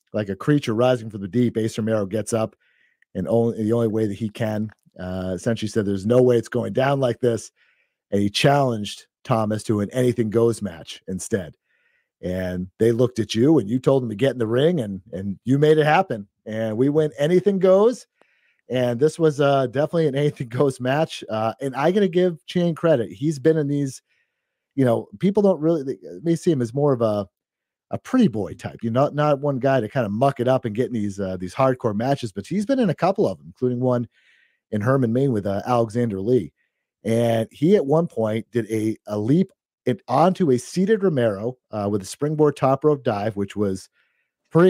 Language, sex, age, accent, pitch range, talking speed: English, male, 40-59, American, 110-145 Hz, 215 wpm